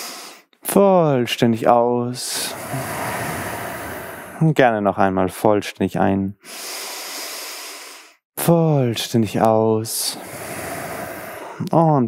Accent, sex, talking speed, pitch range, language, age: German, male, 50 wpm, 100-145 Hz, German, 20-39